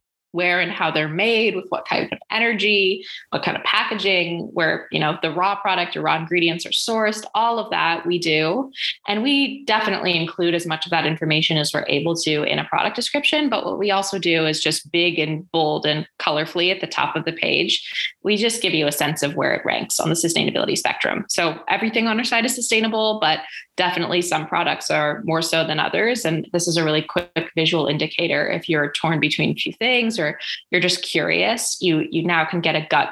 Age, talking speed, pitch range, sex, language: 20-39, 215 wpm, 160-210 Hz, female, English